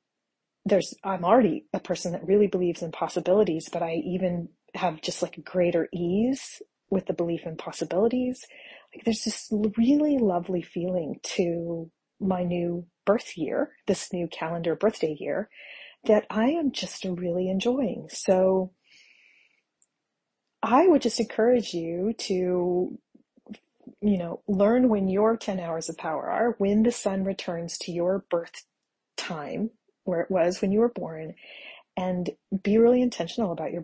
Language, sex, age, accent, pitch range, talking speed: English, female, 30-49, American, 175-220 Hz, 145 wpm